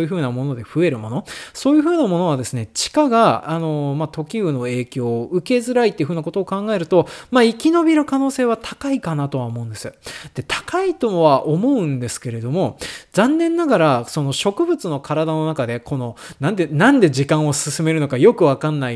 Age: 20-39